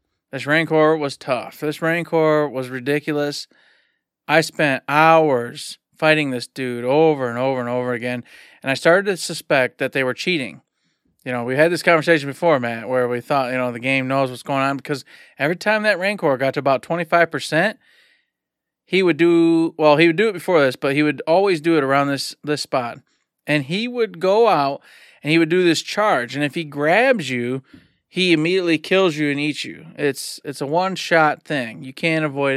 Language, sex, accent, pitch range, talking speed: English, male, American, 140-185 Hz, 200 wpm